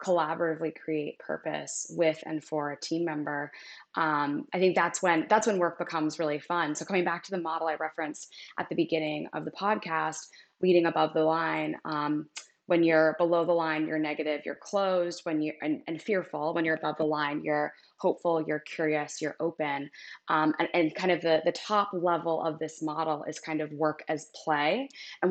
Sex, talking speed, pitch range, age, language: female, 195 wpm, 155-175 Hz, 20-39, English